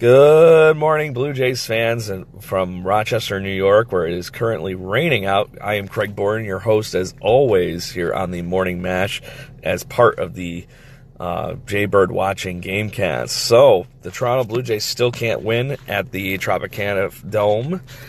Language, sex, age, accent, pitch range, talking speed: English, male, 30-49, American, 100-130 Hz, 165 wpm